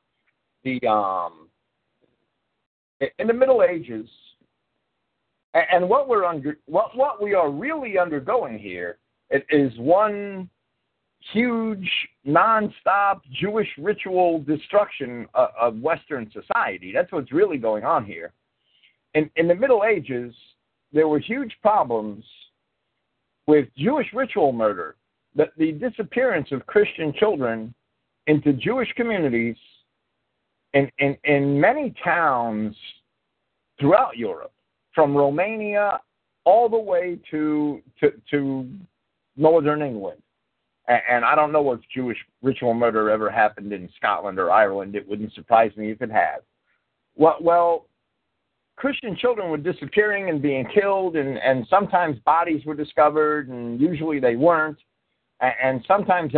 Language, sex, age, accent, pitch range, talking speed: English, male, 50-69, American, 130-190 Hz, 130 wpm